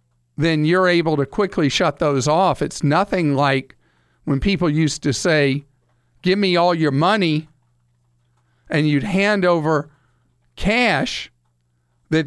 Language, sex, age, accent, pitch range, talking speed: English, male, 50-69, American, 120-170 Hz, 130 wpm